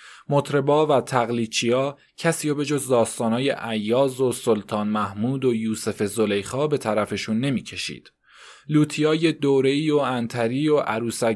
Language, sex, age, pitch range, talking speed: Persian, male, 20-39, 115-145 Hz, 135 wpm